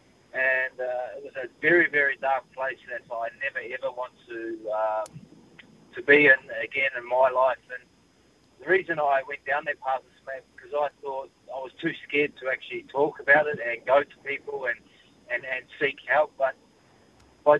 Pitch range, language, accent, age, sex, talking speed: 125-175 Hz, English, Australian, 30-49, male, 190 wpm